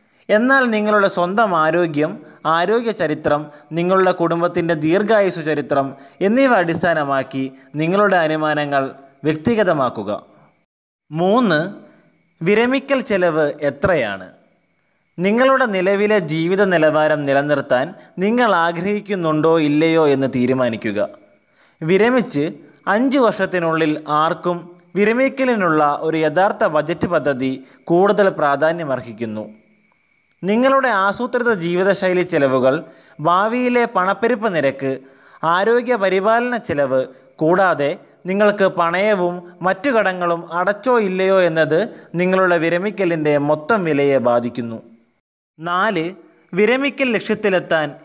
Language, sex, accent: Malayalam, male, native